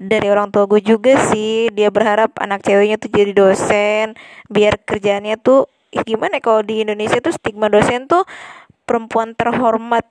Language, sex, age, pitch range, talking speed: Indonesian, female, 20-39, 210-240 Hz, 155 wpm